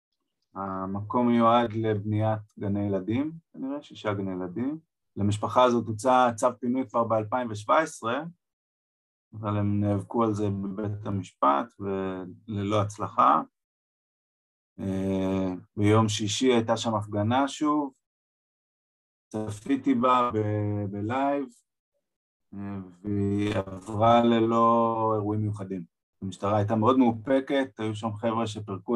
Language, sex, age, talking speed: Hebrew, male, 30-49, 95 wpm